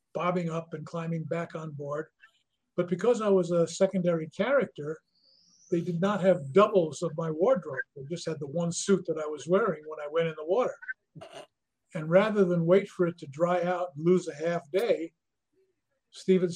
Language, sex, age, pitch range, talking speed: English, male, 50-69, 155-185 Hz, 190 wpm